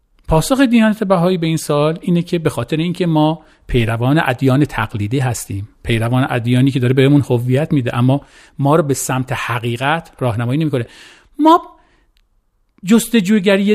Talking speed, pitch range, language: 150 wpm, 135-210 Hz, Persian